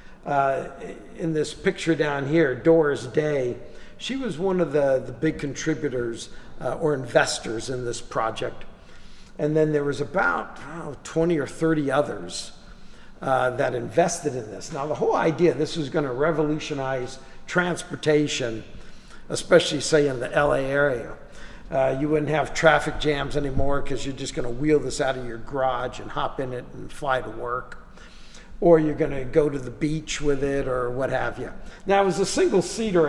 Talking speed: 170 wpm